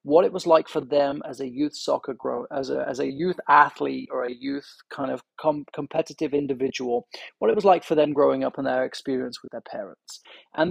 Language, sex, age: English, male, 30-49